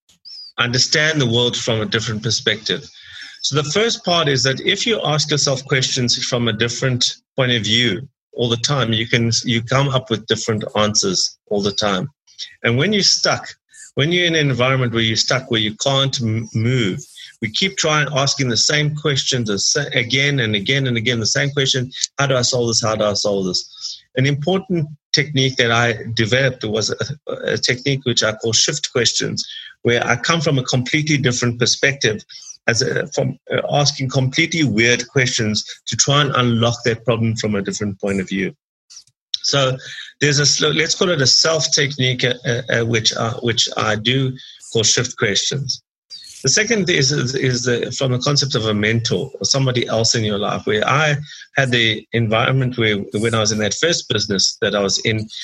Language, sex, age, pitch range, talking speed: English, male, 30-49, 115-140 Hz, 190 wpm